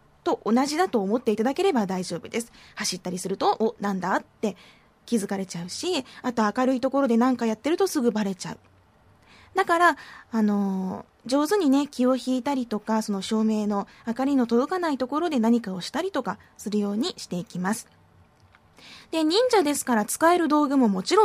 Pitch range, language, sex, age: 205-285 Hz, Japanese, female, 20-39